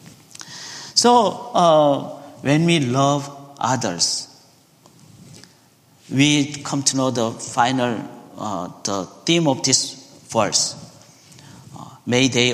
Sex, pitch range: male, 125-160 Hz